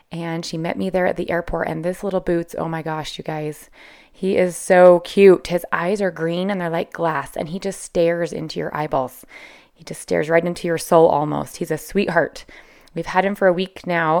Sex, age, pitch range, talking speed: female, 20-39, 170-215 Hz, 230 wpm